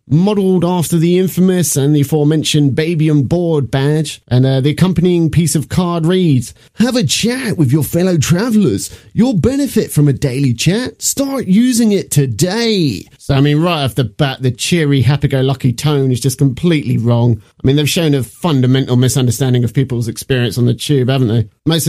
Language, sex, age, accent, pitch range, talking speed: English, male, 30-49, British, 135-175 Hz, 185 wpm